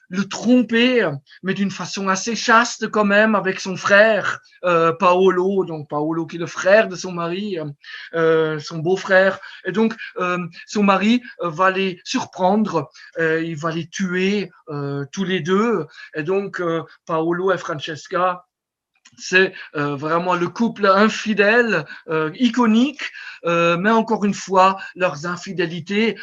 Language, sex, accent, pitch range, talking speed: French, male, French, 170-220 Hz, 145 wpm